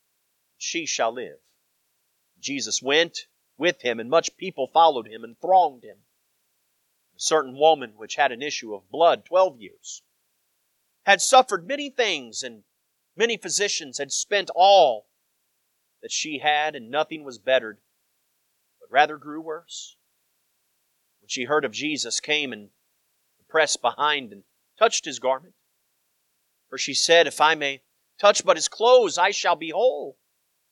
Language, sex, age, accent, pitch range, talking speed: English, male, 40-59, American, 140-205 Hz, 145 wpm